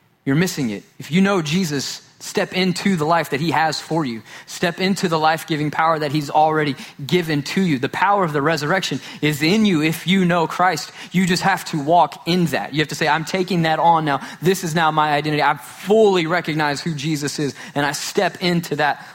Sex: male